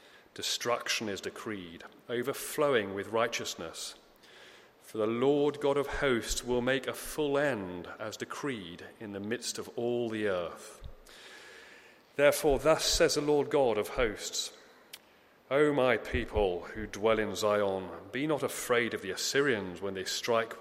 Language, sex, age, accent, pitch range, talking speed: English, male, 30-49, British, 105-150 Hz, 145 wpm